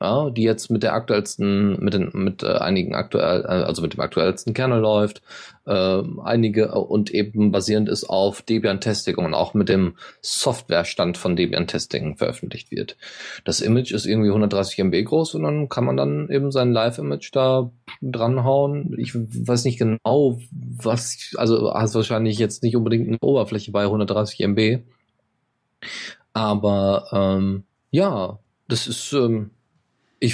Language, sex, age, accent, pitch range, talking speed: German, male, 20-39, German, 95-120 Hz, 150 wpm